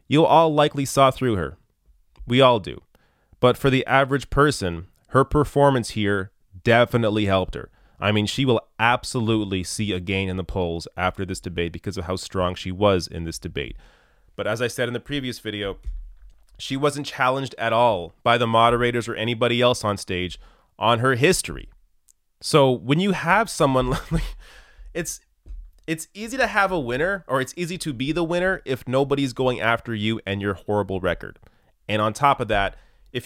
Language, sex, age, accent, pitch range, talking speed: English, male, 30-49, American, 100-135 Hz, 185 wpm